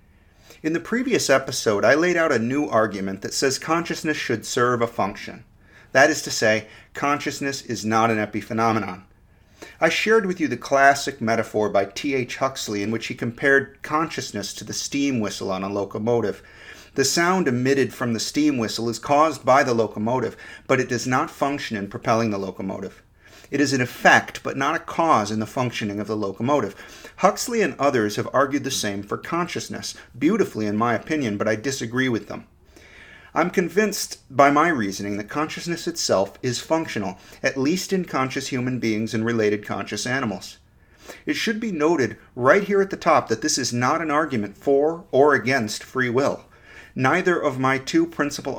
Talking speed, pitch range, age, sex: 180 wpm, 105-145 Hz, 40-59, male